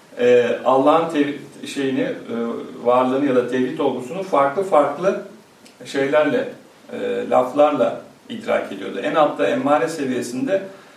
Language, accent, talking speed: English, Turkish, 95 wpm